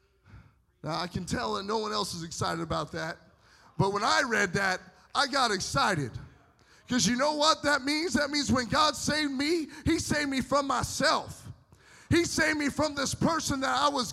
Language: English